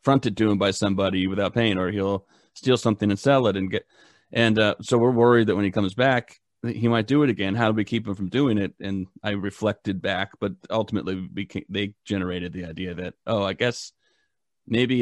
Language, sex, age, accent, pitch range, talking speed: English, male, 30-49, American, 95-115 Hz, 225 wpm